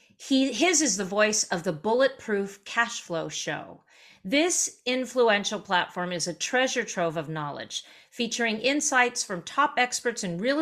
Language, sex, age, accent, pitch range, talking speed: English, female, 40-59, American, 180-245 Hz, 145 wpm